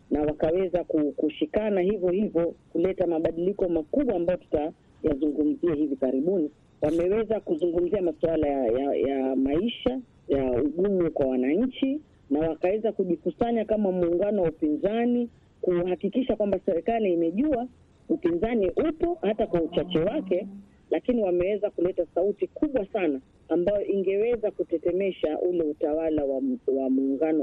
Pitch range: 150-195 Hz